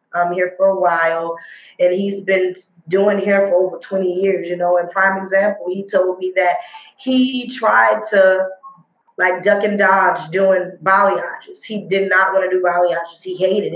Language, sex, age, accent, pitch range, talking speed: English, female, 20-39, American, 185-215 Hz, 180 wpm